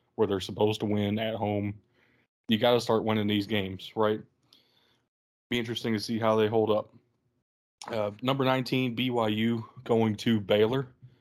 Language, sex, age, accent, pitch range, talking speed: English, male, 20-39, American, 105-120 Hz, 160 wpm